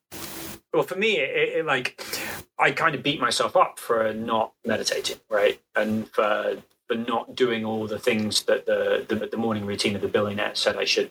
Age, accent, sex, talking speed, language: 30-49, British, male, 195 wpm, English